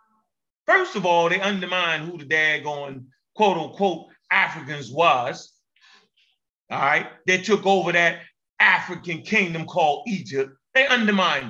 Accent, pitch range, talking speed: American, 165-215 Hz, 125 wpm